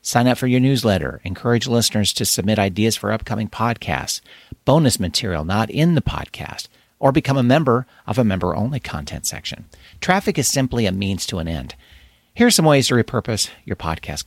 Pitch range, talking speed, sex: 90-125 Hz, 180 wpm, male